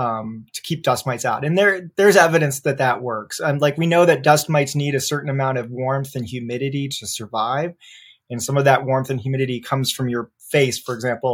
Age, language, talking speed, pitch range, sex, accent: 20-39, English, 215 wpm, 125-150 Hz, male, American